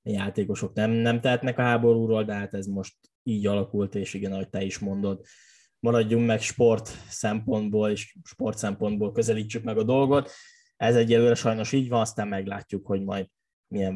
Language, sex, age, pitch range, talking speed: Hungarian, male, 10-29, 105-120 Hz, 170 wpm